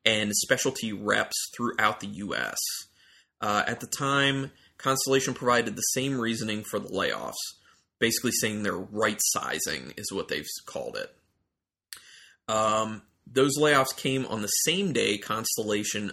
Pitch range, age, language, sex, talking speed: 105-130 Hz, 30-49, English, male, 140 wpm